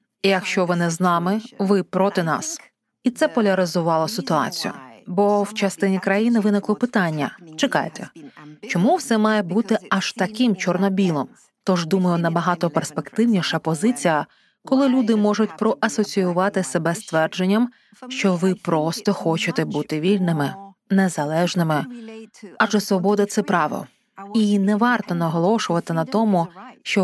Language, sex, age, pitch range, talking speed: Ukrainian, female, 20-39, 175-215 Hz, 125 wpm